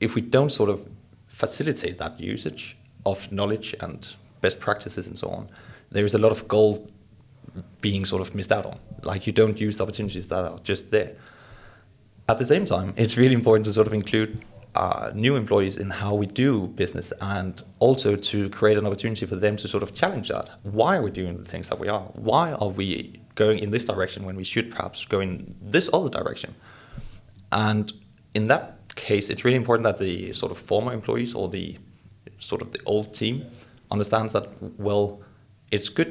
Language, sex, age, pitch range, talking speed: English, male, 30-49, 100-115 Hz, 200 wpm